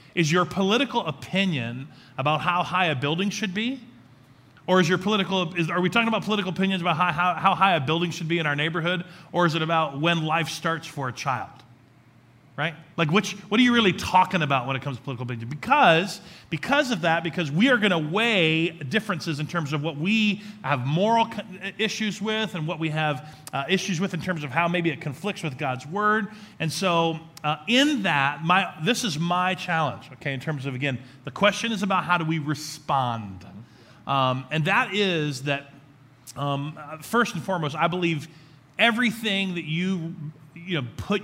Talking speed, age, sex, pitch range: 195 wpm, 30-49, male, 145-195 Hz